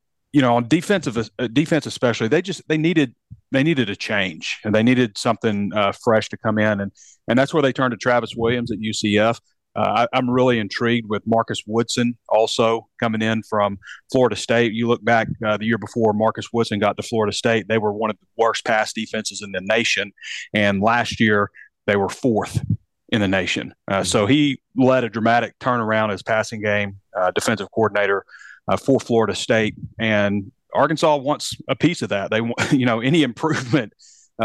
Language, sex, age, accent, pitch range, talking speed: English, male, 40-59, American, 105-120 Hz, 195 wpm